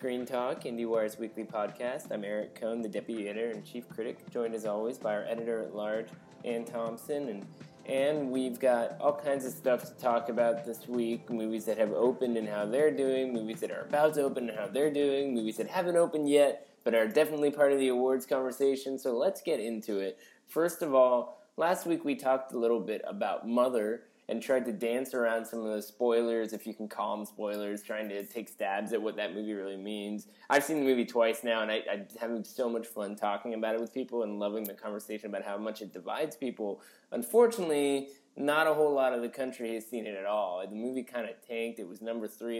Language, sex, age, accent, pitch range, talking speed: English, male, 20-39, American, 110-130 Hz, 225 wpm